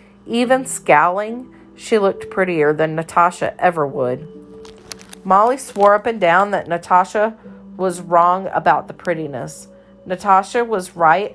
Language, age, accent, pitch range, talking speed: English, 40-59, American, 155-200 Hz, 125 wpm